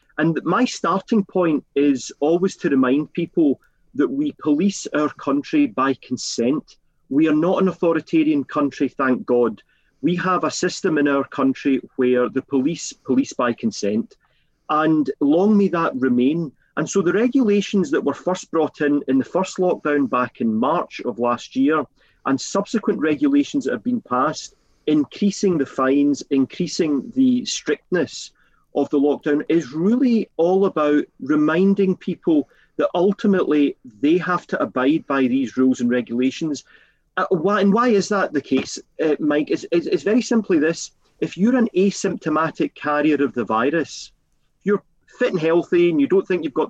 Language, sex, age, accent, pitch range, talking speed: English, male, 40-59, British, 140-195 Hz, 165 wpm